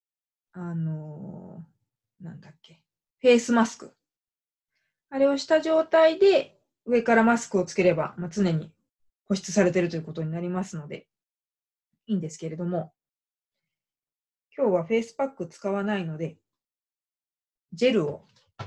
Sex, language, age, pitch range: female, Japanese, 20-39, 165-215 Hz